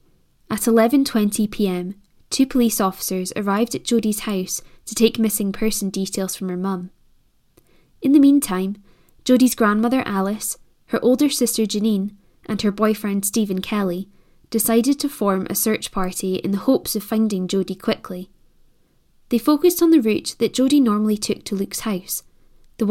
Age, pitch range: 10-29, 195-235 Hz